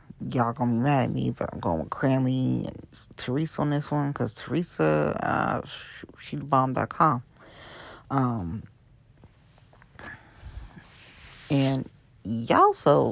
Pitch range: 125-160 Hz